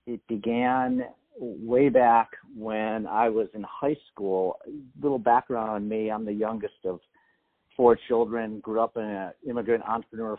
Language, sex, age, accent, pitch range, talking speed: English, male, 50-69, American, 105-120 Hz, 155 wpm